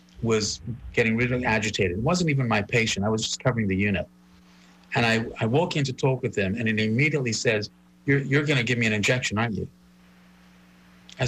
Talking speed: 205 wpm